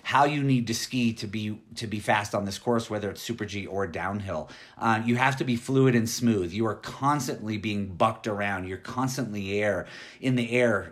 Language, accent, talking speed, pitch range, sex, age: English, American, 215 wpm, 105-125 Hz, male, 30-49